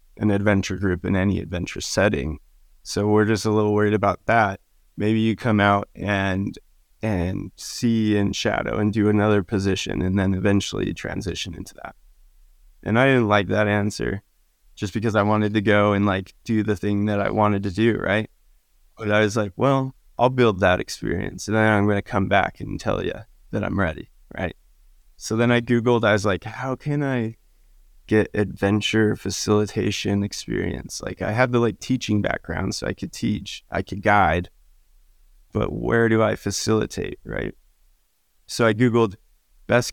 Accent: American